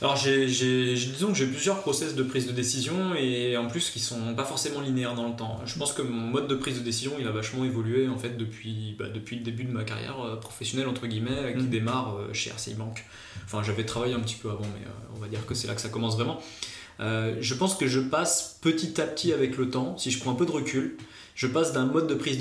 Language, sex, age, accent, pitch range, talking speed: French, male, 20-39, French, 115-145 Hz, 255 wpm